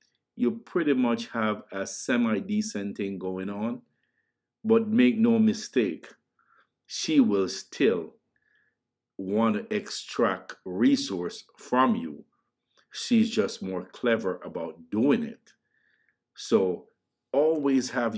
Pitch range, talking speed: 95-135 Hz, 105 wpm